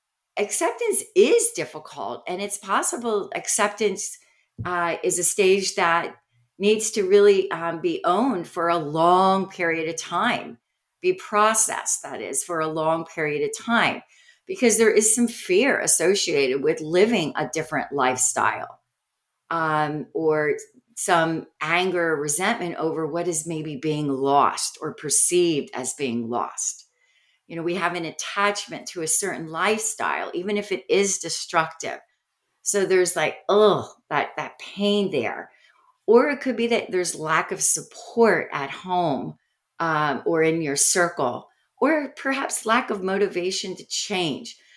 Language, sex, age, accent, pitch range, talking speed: English, female, 40-59, American, 160-235 Hz, 145 wpm